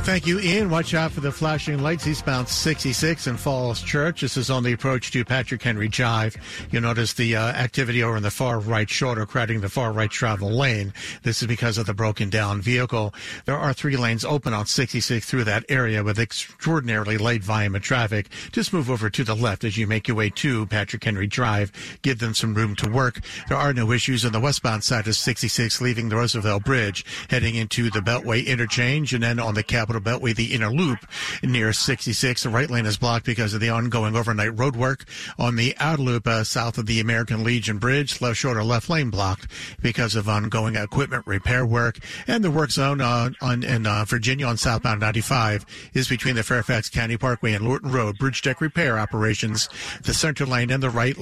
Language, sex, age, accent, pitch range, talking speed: English, male, 50-69, American, 110-130 Hz, 210 wpm